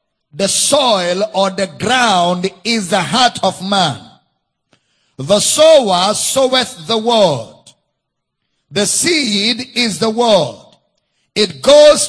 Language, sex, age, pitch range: English, male, 50-69, 195-250 Hz